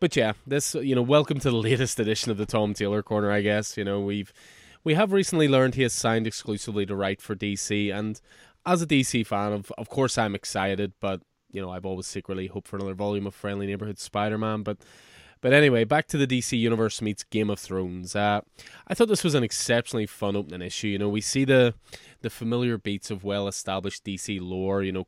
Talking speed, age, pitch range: 220 wpm, 20-39, 100-115 Hz